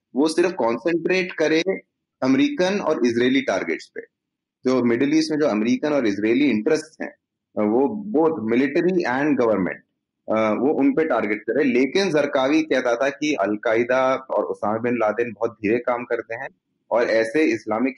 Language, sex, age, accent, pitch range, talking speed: Hindi, male, 30-49, native, 115-160 Hz, 155 wpm